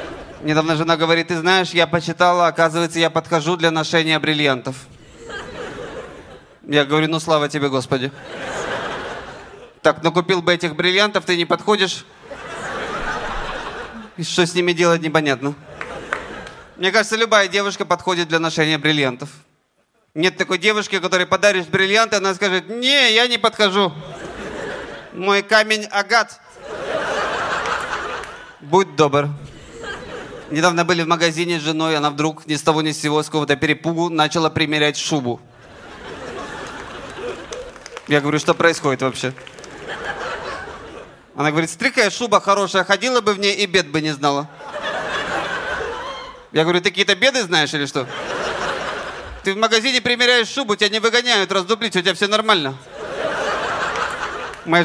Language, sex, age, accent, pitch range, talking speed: Russian, male, 20-39, native, 150-200 Hz, 130 wpm